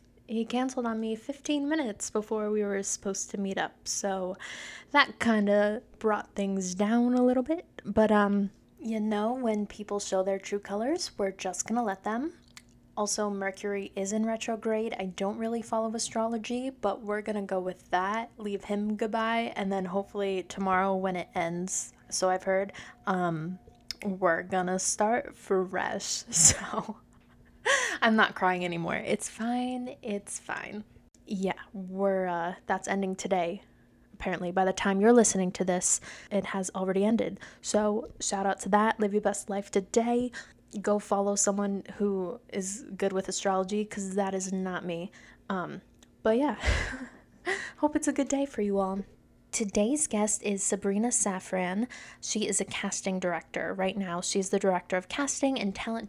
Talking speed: 165 wpm